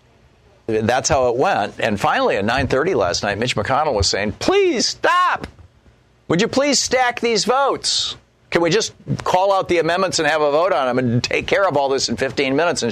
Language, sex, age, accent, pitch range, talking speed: English, male, 50-69, American, 120-185 Hz, 210 wpm